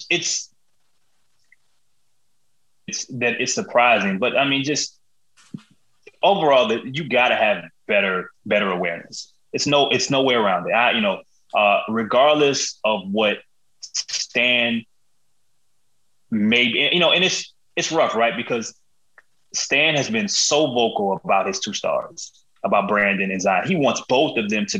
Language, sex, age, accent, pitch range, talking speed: English, male, 20-39, American, 115-160 Hz, 150 wpm